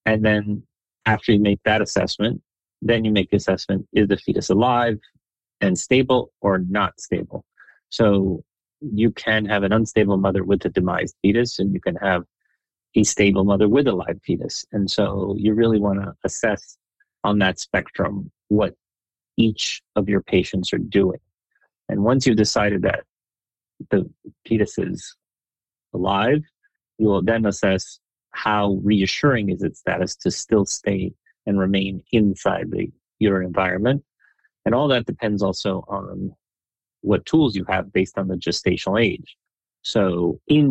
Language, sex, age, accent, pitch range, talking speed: English, male, 30-49, American, 95-115 Hz, 155 wpm